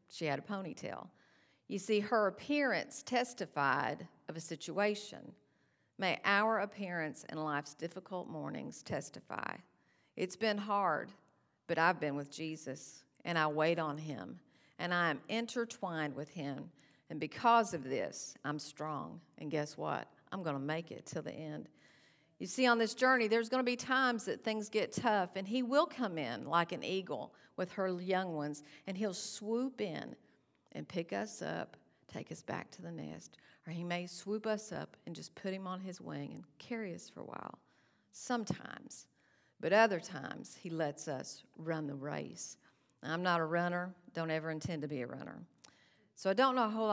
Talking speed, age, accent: 180 wpm, 50-69, American